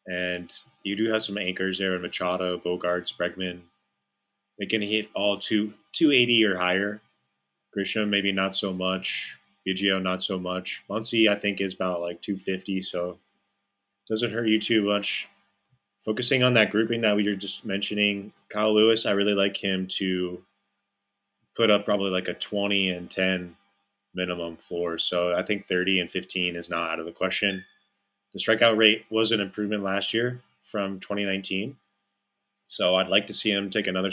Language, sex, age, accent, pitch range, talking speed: English, male, 20-39, American, 95-105 Hz, 170 wpm